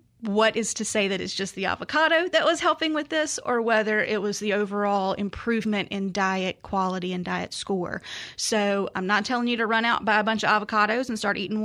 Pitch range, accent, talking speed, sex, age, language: 195-225 Hz, American, 220 wpm, female, 30-49, English